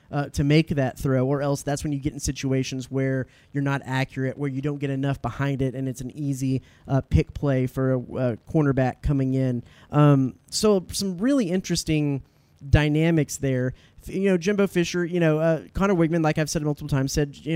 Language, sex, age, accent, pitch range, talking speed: English, male, 30-49, American, 135-160 Hz, 205 wpm